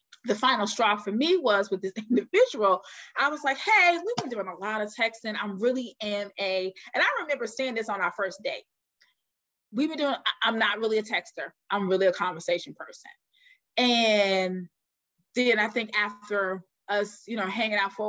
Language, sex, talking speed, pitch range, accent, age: English, female, 190 wpm, 205-275 Hz, American, 20-39